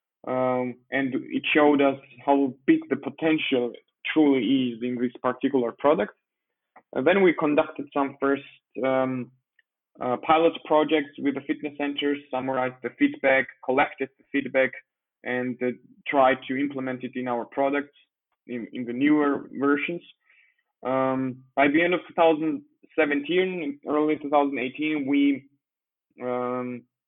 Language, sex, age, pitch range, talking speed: English, male, 20-39, 125-150 Hz, 135 wpm